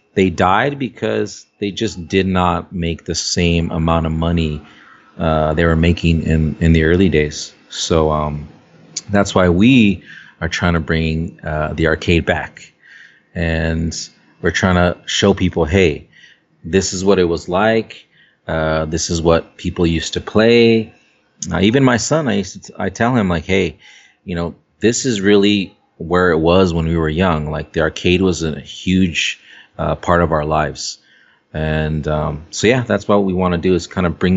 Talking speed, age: 185 wpm, 30-49